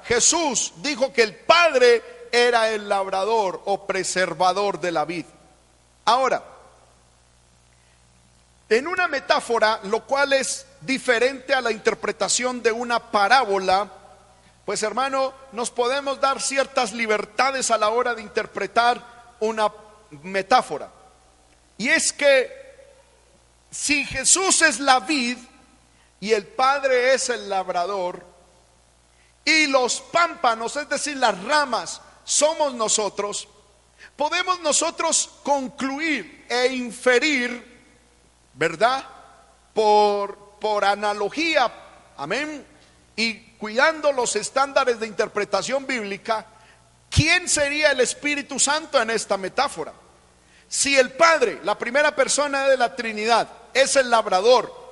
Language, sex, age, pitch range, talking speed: Spanish, male, 40-59, 205-275 Hz, 110 wpm